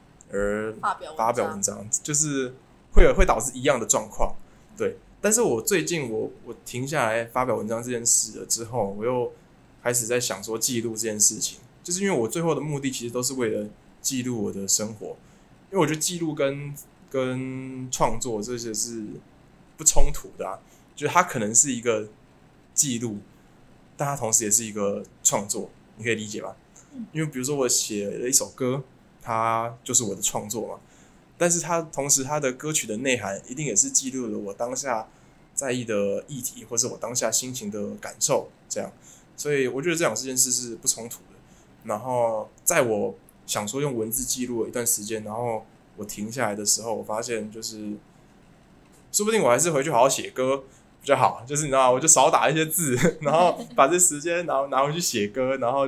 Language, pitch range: Chinese, 110-145 Hz